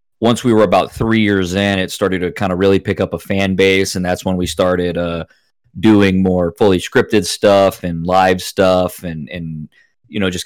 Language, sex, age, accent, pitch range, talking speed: Italian, male, 30-49, American, 85-100 Hz, 210 wpm